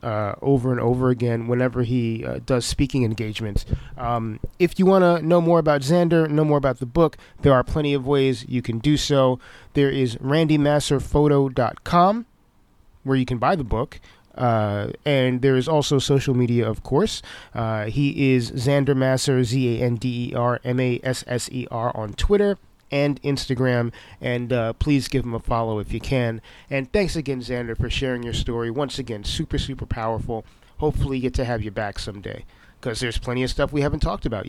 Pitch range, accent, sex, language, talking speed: 120-145 Hz, American, male, English, 195 wpm